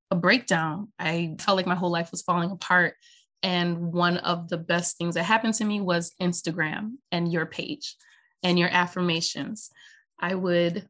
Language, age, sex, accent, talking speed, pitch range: English, 20-39, female, American, 170 wpm, 175-205 Hz